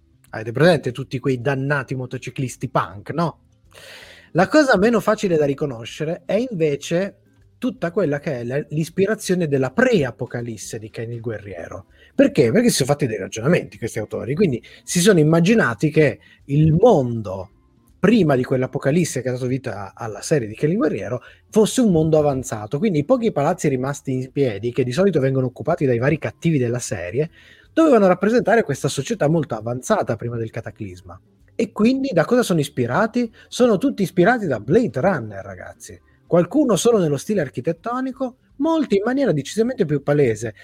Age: 20-39